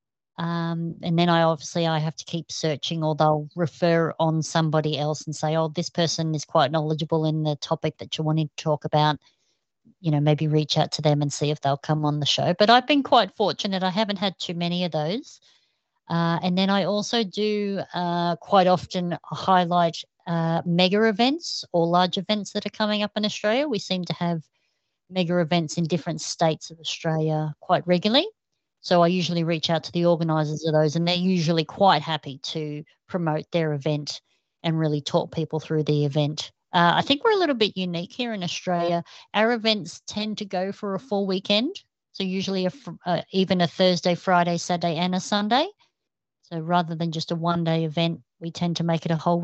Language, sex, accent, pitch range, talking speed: Swedish, female, Australian, 155-190 Hz, 205 wpm